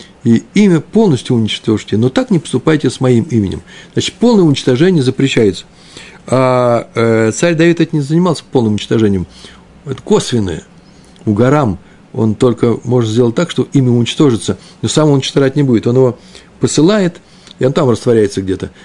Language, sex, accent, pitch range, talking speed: Russian, male, native, 120-180 Hz, 155 wpm